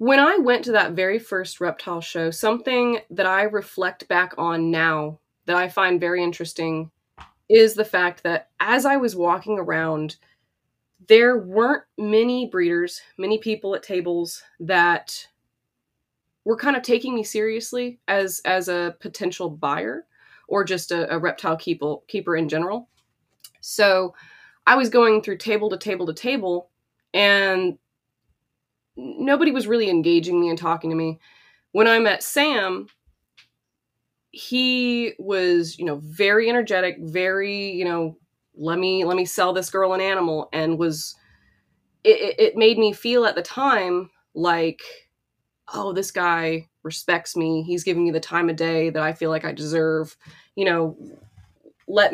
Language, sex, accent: English, female, American